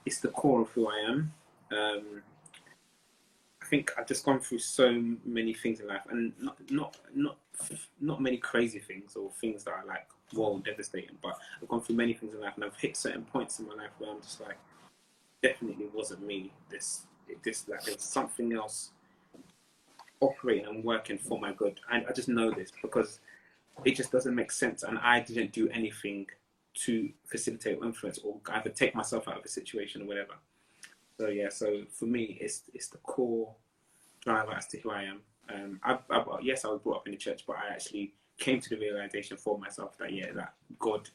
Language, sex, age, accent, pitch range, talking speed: English, male, 20-39, British, 105-120 Hz, 200 wpm